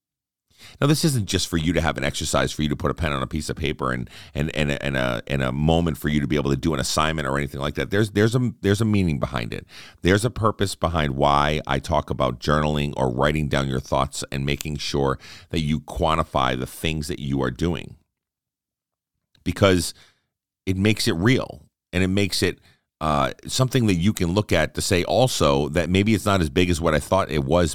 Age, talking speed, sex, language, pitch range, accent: 40-59, 235 wpm, male, English, 70-95 Hz, American